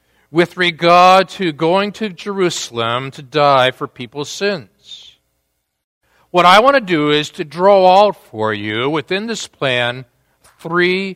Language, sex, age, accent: English, male, 50-69, American